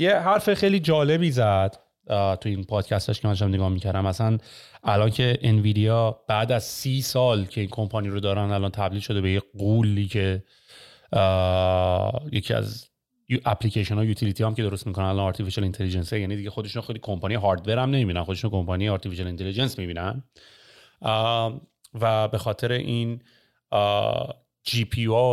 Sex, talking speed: male, 145 wpm